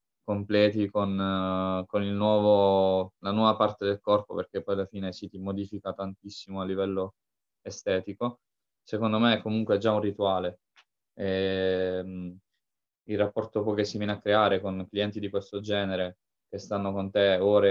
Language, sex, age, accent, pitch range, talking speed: Italian, male, 20-39, native, 95-105 Hz, 165 wpm